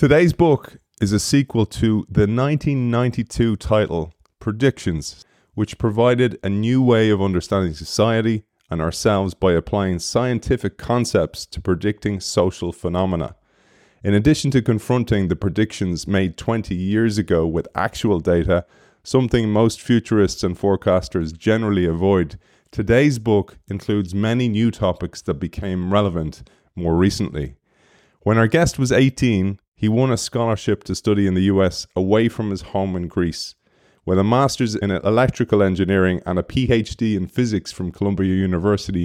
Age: 30-49